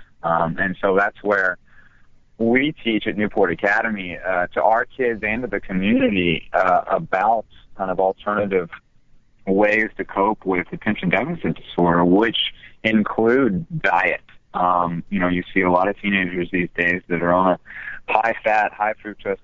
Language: English